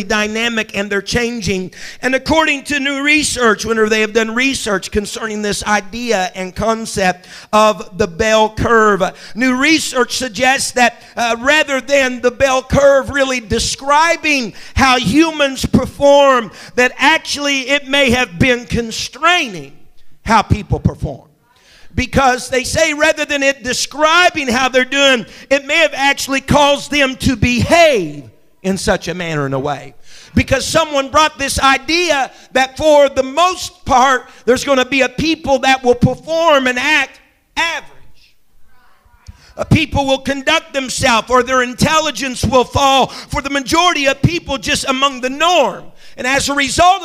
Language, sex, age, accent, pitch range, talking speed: English, male, 50-69, American, 225-285 Hz, 150 wpm